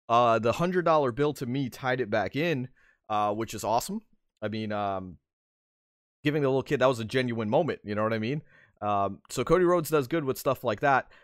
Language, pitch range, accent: English, 105-135 Hz, American